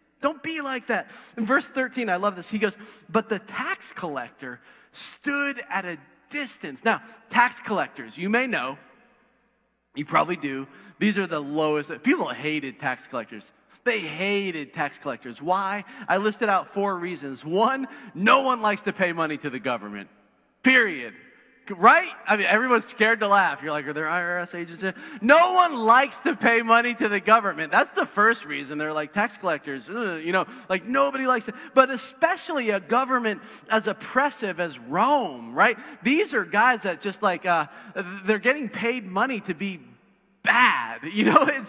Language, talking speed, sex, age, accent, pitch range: English, 175 wpm, male, 30-49, American, 185-260 Hz